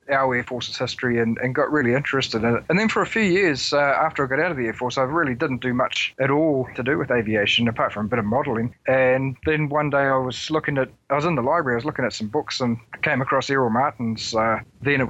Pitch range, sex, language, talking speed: 120-150 Hz, male, English, 280 wpm